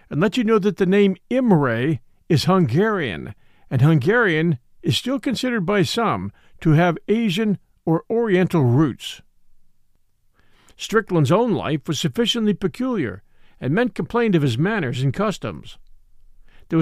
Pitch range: 135-210 Hz